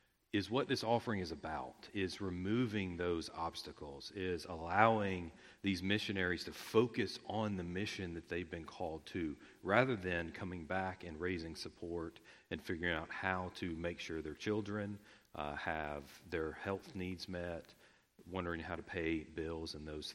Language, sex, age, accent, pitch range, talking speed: English, male, 40-59, American, 85-100 Hz, 160 wpm